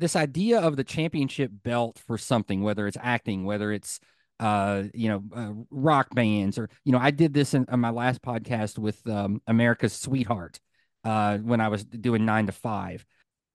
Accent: American